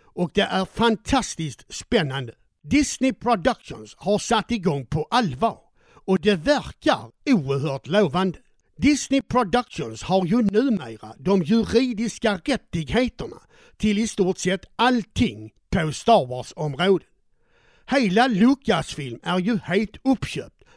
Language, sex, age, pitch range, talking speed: Swedish, male, 60-79, 165-235 Hz, 115 wpm